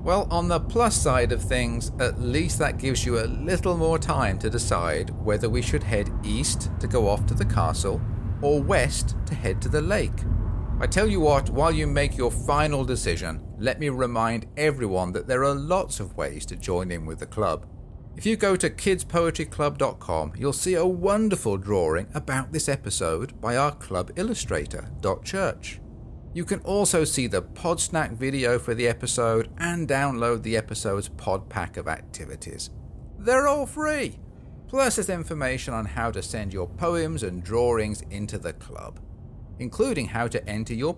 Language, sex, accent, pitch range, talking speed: English, male, British, 95-155 Hz, 175 wpm